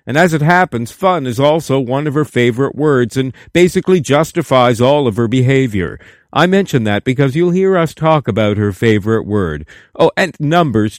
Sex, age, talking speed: male, 50-69, 185 wpm